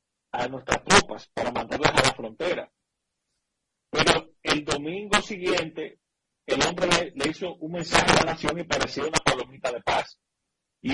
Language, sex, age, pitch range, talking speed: Spanish, male, 40-59, 145-180 Hz, 160 wpm